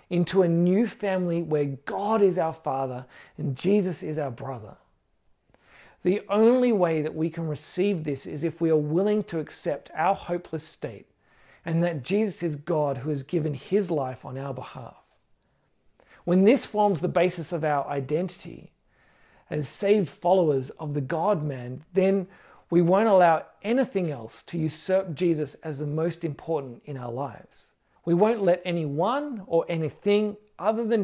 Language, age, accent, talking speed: English, 40-59, Australian, 160 wpm